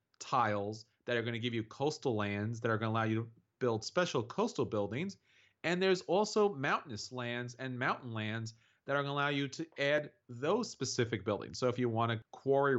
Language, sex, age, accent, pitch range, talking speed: English, male, 30-49, American, 120-165 Hz, 210 wpm